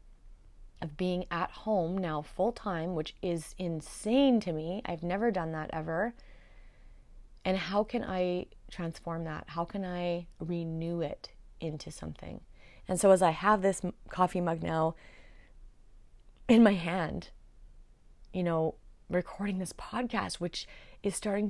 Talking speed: 135 wpm